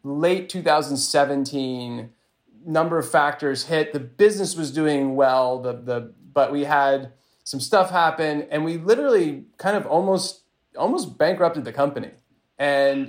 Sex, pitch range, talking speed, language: male, 130-160 Hz, 140 wpm, English